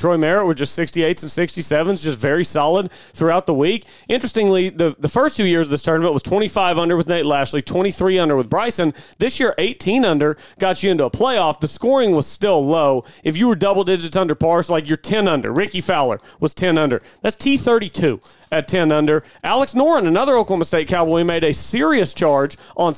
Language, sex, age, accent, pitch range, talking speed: English, male, 30-49, American, 150-185 Hz, 220 wpm